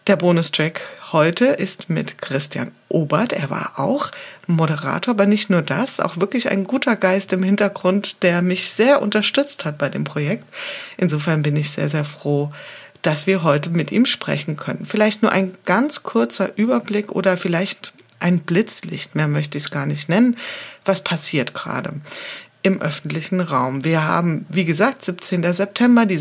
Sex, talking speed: female, 165 wpm